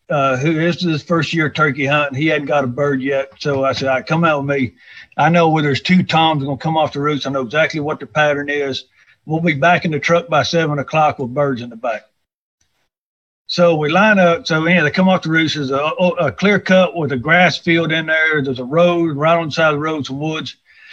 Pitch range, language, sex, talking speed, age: 140-175 Hz, English, male, 265 wpm, 50-69